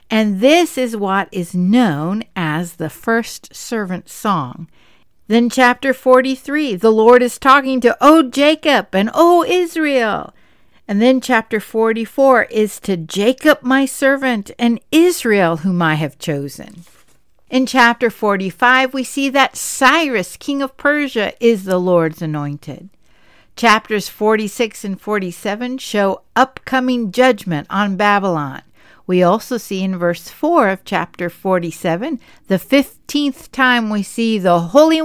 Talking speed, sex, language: 135 wpm, female, English